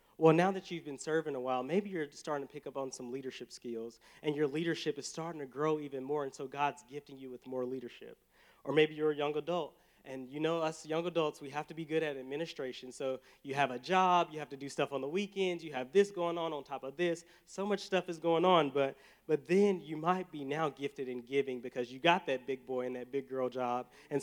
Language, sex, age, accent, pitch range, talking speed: English, male, 30-49, American, 135-175 Hz, 260 wpm